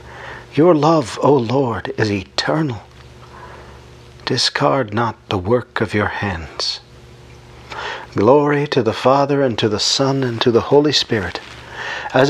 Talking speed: 130 wpm